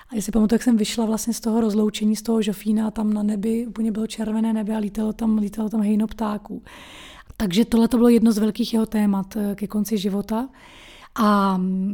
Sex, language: female, Czech